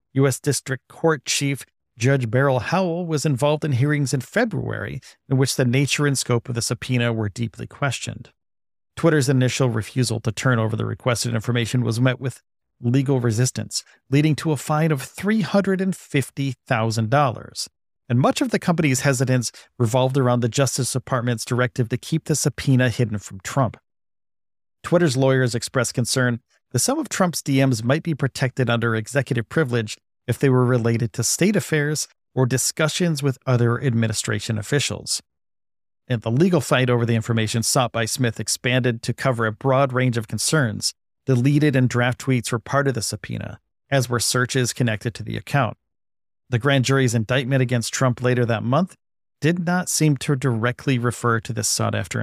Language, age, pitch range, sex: English, 40-59, 115-140 Hz, male